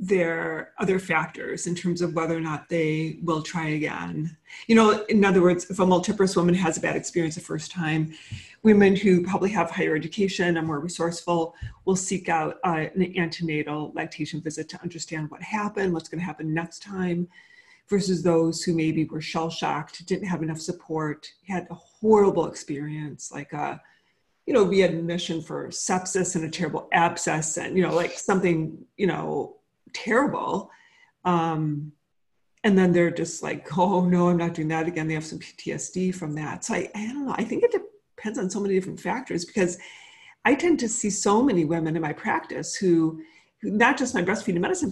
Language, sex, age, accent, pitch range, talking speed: English, female, 40-59, American, 165-195 Hz, 185 wpm